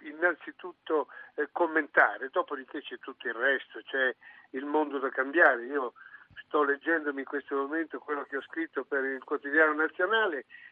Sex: male